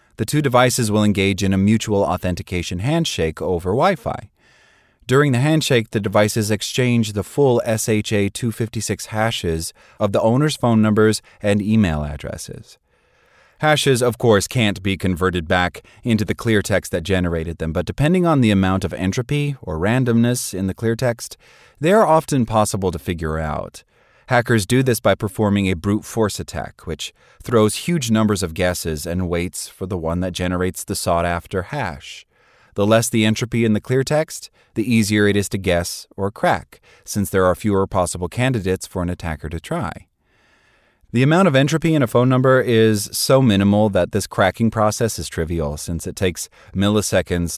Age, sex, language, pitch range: 30-49, male, English, 90-115 Hz